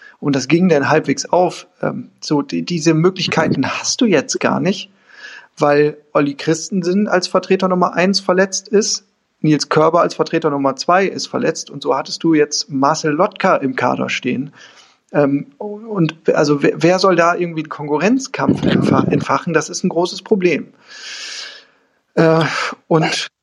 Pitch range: 155-195 Hz